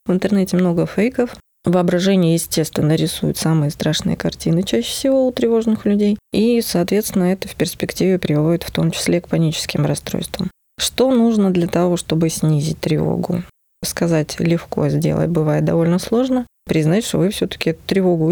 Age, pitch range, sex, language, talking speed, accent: 20-39, 160-205 Hz, female, Russian, 150 wpm, native